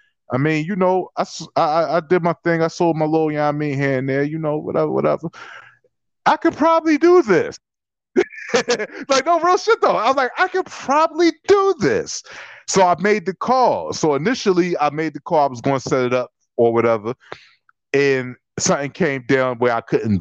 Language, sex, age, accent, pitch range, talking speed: English, male, 30-49, American, 120-170 Hz, 210 wpm